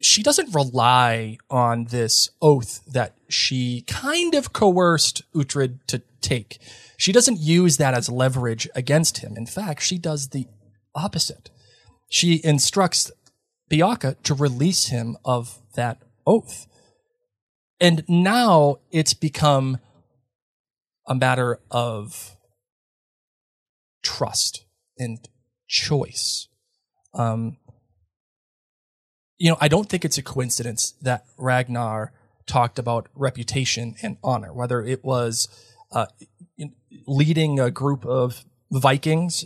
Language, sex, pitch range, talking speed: English, male, 120-160 Hz, 110 wpm